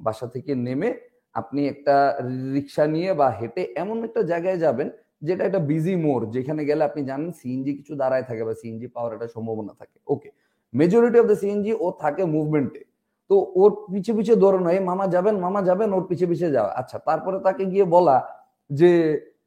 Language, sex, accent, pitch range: Bengali, male, native, 150-215 Hz